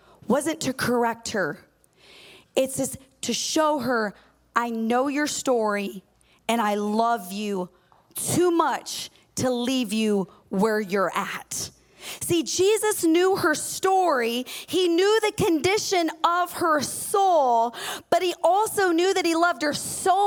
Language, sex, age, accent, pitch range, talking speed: English, female, 30-49, American, 265-345 Hz, 135 wpm